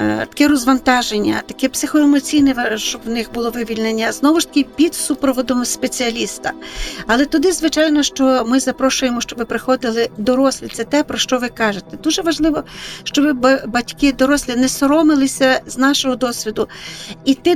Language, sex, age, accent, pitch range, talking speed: Ukrainian, female, 50-69, native, 225-275 Hz, 140 wpm